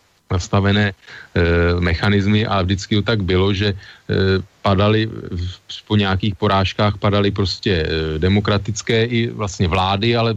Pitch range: 95-105 Hz